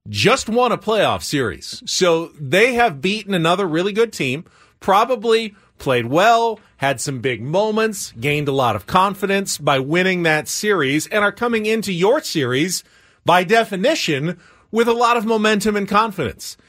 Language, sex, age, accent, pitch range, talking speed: English, male, 40-59, American, 150-205 Hz, 160 wpm